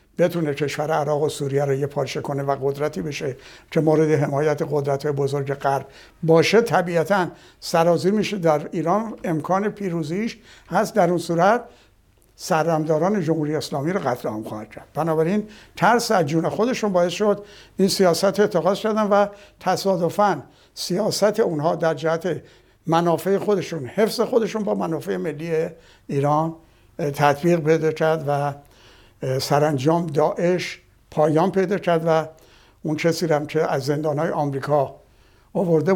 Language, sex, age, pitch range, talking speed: Persian, male, 60-79, 140-175 Hz, 135 wpm